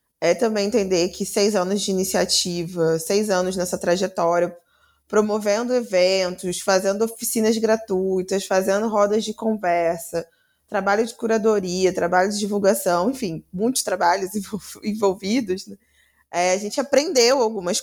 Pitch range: 185-230 Hz